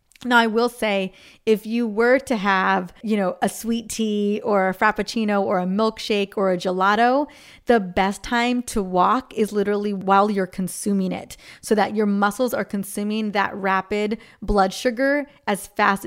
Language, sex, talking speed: English, female, 170 wpm